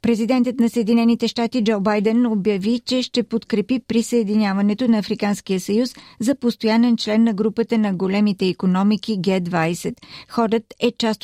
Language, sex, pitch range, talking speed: Bulgarian, female, 195-225 Hz, 140 wpm